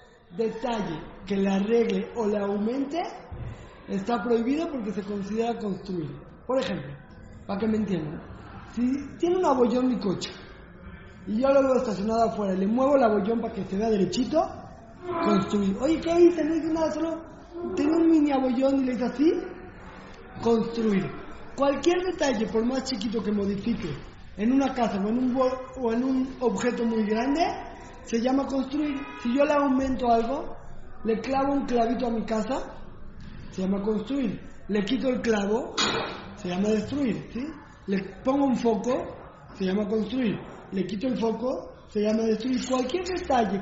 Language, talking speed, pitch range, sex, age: Spanish, 165 wpm, 210-270 Hz, male, 20-39